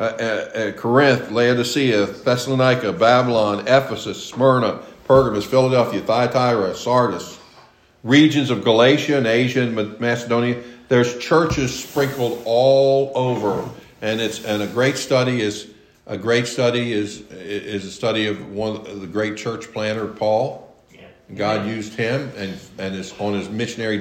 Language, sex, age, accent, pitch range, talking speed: English, male, 50-69, American, 110-135 Hz, 140 wpm